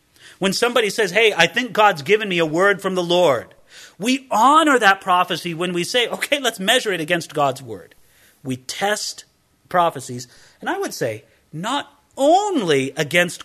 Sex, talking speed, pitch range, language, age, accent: male, 170 wpm, 165-240 Hz, English, 40-59, American